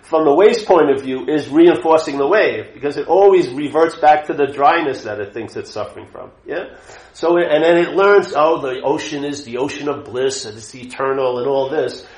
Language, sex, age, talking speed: English, male, 50-69, 215 wpm